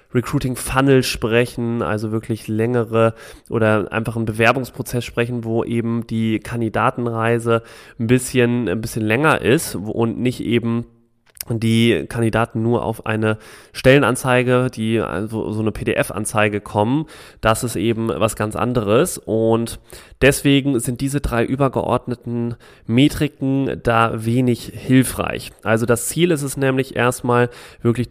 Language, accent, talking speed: German, German, 130 wpm